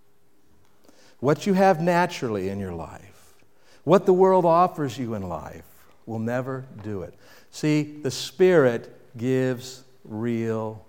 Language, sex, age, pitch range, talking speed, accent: English, male, 60-79, 135-205 Hz, 125 wpm, American